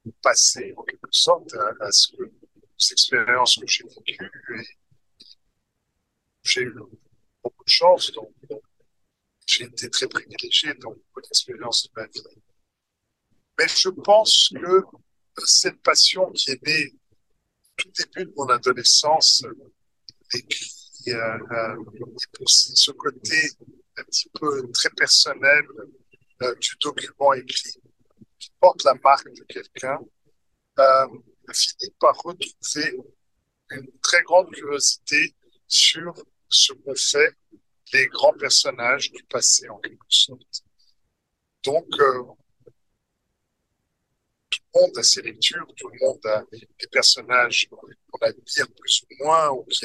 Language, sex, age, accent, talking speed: French, male, 50-69, French, 125 wpm